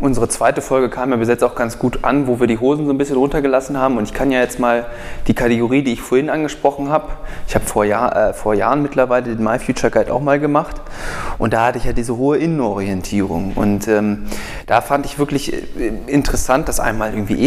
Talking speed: 225 wpm